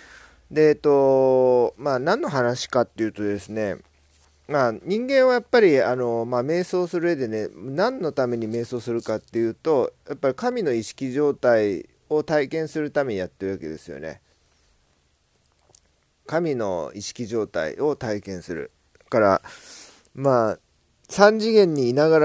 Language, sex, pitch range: Japanese, male, 100-155 Hz